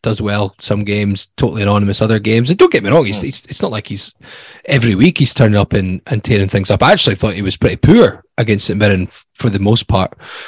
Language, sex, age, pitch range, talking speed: English, male, 20-39, 100-125 Hz, 245 wpm